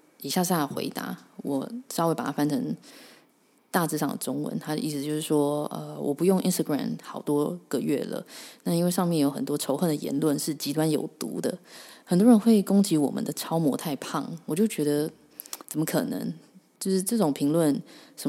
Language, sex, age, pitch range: Chinese, female, 20-39, 150-195 Hz